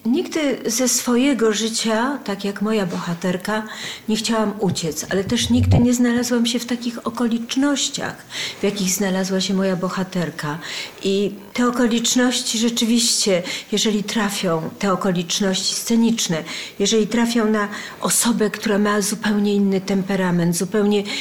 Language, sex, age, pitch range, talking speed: Polish, female, 40-59, 185-225 Hz, 125 wpm